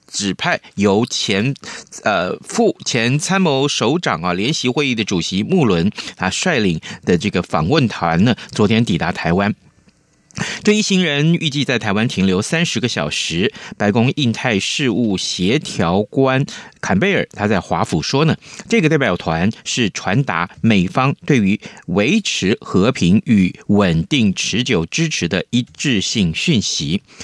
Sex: male